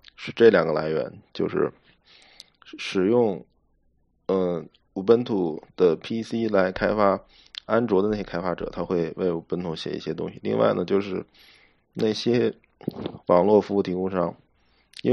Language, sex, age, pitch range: Chinese, male, 20-39, 95-115 Hz